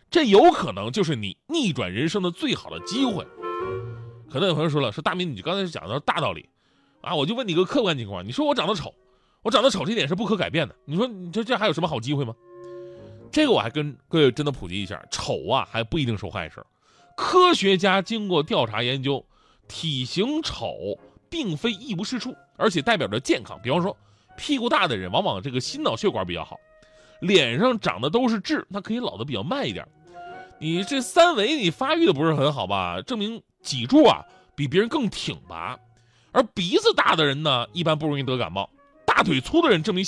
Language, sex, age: Chinese, male, 30-49